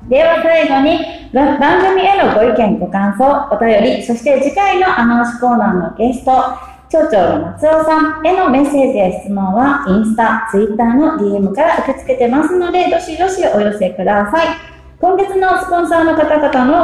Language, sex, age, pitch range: Japanese, female, 30-49, 205-305 Hz